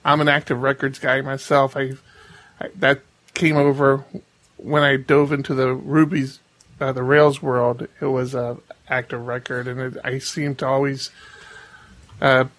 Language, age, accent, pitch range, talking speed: English, 30-49, American, 135-160 Hz, 160 wpm